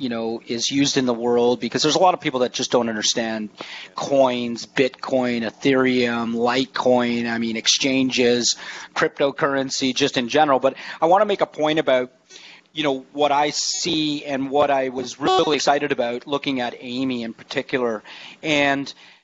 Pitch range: 115-140 Hz